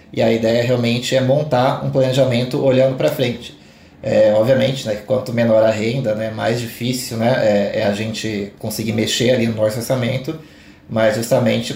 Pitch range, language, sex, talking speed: 110-125 Hz, Portuguese, male, 180 wpm